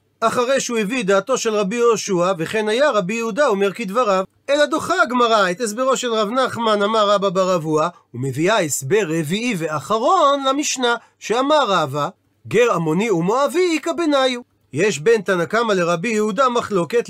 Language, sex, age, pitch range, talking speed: Hebrew, male, 40-59, 200-265 Hz, 145 wpm